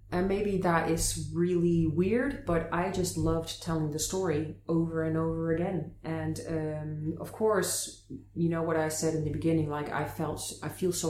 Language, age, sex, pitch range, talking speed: English, 30-49, female, 135-185 Hz, 190 wpm